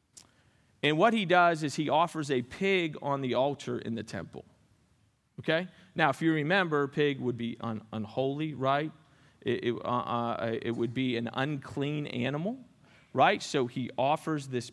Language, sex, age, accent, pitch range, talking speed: English, male, 40-59, American, 120-155 Hz, 165 wpm